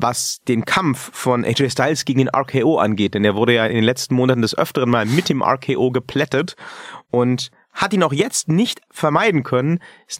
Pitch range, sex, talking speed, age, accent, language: 120-165 Hz, male, 200 wpm, 30-49, German, German